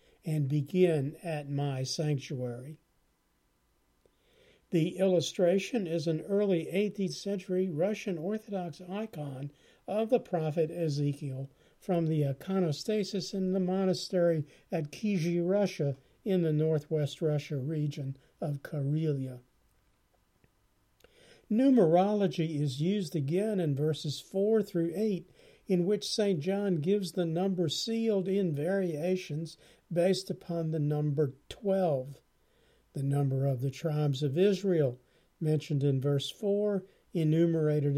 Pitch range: 145-190 Hz